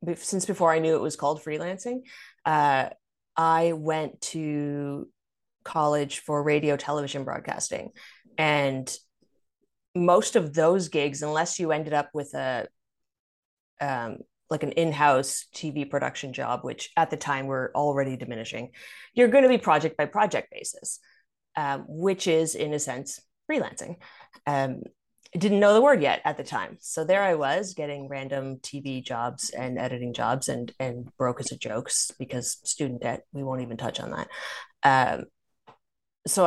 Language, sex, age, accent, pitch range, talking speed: English, female, 20-39, American, 135-165 Hz, 155 wpm